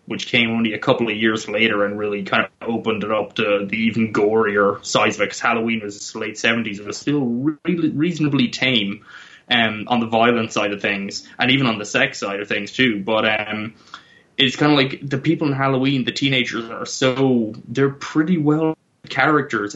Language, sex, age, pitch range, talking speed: English, male, 20-39, 110-130 Hz, 205 wpm